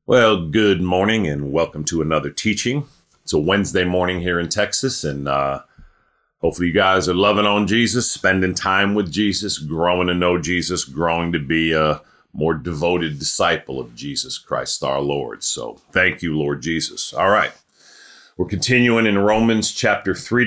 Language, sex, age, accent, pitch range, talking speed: English, male, 40-59, American, 80-100 Hz, 165 wpm